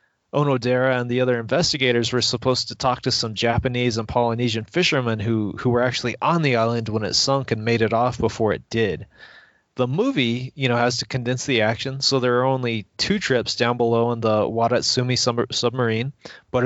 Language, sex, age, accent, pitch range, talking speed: English, male, 20-39, American, 115-135 Hz, 200 wpm